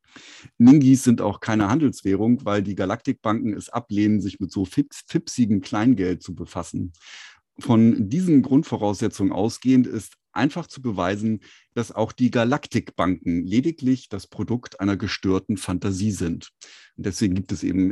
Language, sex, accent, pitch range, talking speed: German, male, German, 100-120 Hz, 135 wpm